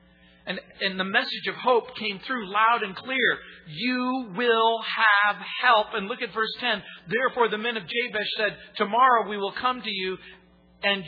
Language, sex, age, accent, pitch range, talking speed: English, male, 50-69, American, 165-225 Hz, 180 wpm